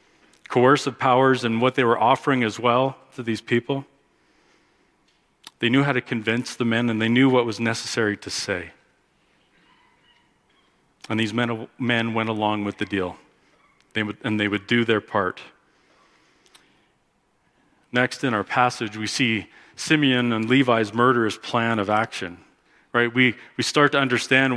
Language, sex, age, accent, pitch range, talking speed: English, male, 40-59, American, 110-130 Hz, 155 wpm